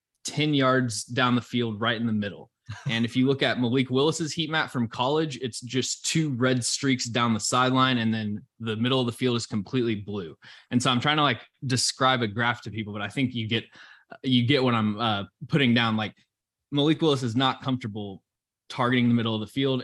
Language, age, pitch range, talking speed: English, 20-39, 110-130 Hz, 220 wpm